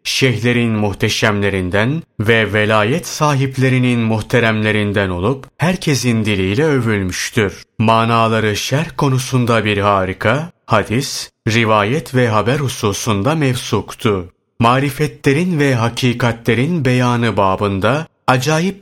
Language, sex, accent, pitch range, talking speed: Turkish, male, native, 105-135 Hz, 85 wpm